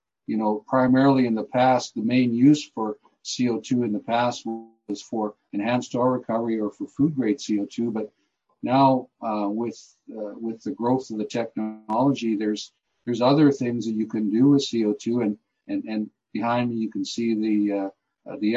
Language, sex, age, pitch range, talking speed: English, male, 50-69, 105-125 Hz, 175 wpm